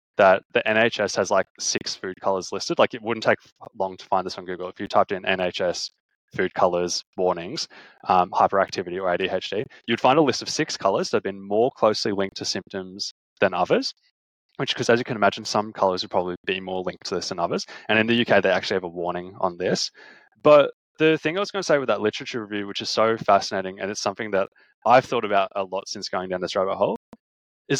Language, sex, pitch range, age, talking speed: English, male, 95-125 Hz, 20-39, 230 wpm